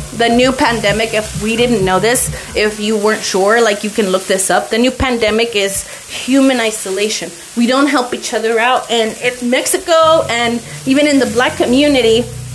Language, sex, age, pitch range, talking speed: English, female, 30-49, 215-280 Hz, 185 wpm